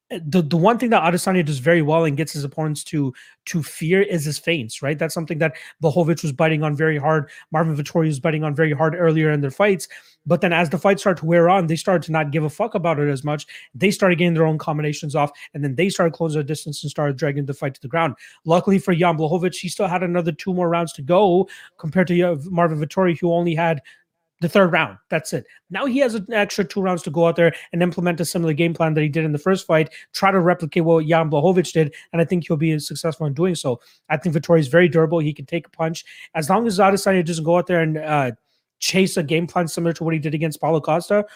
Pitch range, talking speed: 155-180 Hz, 260 wpm